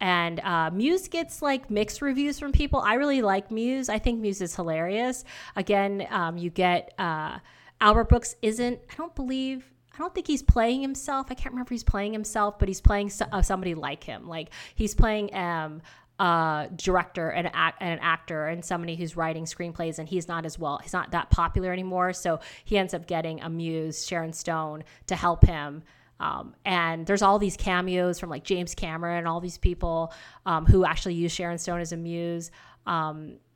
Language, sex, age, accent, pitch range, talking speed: English, female, 30-49, American, 165-215 Hz, 195 wpm